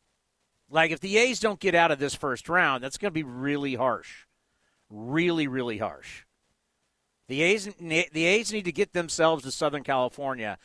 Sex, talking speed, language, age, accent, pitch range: male, 175 wpm, English, 50-69, American, 140-180 Hz